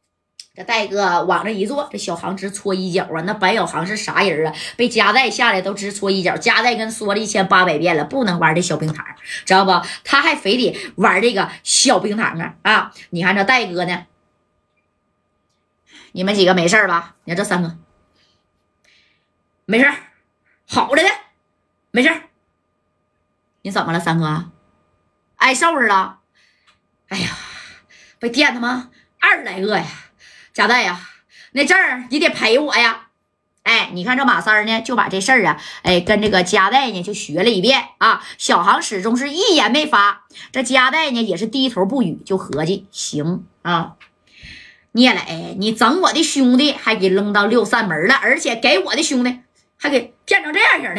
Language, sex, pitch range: Chinese, female, 180-265 Hz